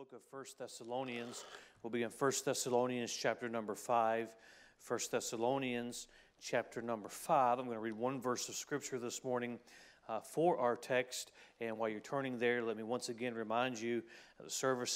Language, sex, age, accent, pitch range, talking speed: English, male, 40-59, American, 115-125 Hz, 175 wpm